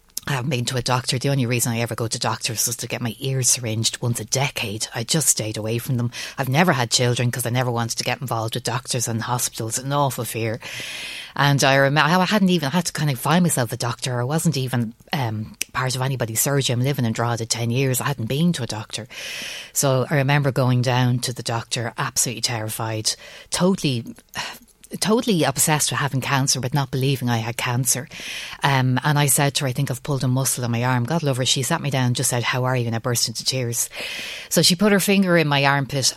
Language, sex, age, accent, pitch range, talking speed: English, female, 30-49, Irish, 120-150 Hz, 240 wpm